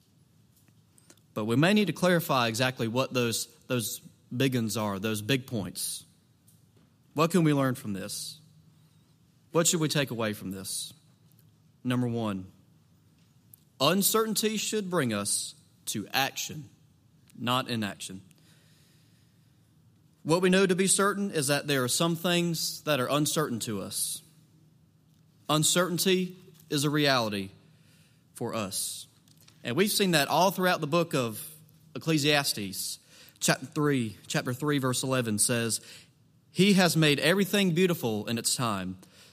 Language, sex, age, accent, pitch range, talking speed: English, male, 30-49, American, 125-165 Hz, 130 wpm